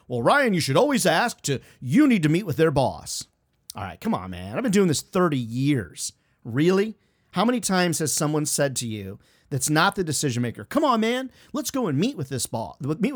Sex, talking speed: male, 230 wpm